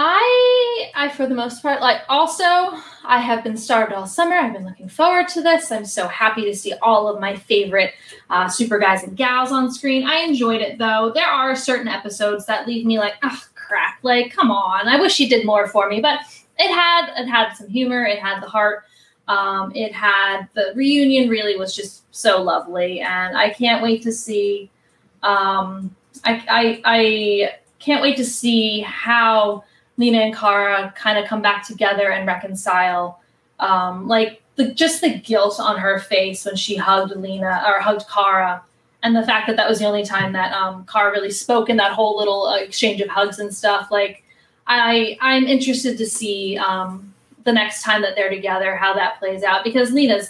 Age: 10-29